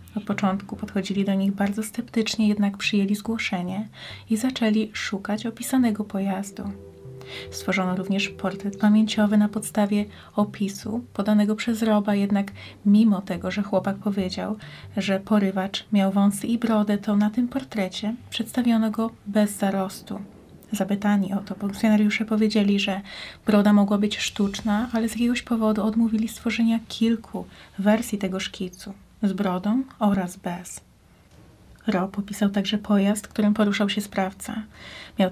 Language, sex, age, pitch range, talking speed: Polish, female, 30-49, 195-215 Hz, 135 wpm